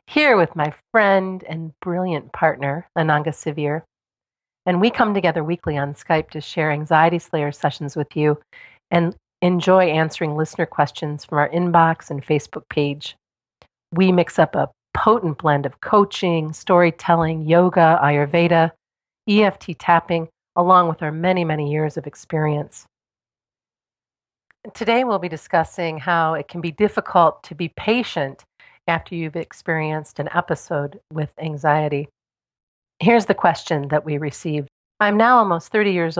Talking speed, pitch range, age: 140 wpm, 150-175 Hz, 40-59